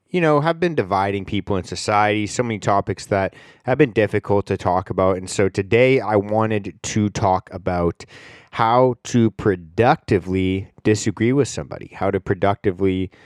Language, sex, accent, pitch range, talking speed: English, male, American, 95-120 Hz, 160 wpm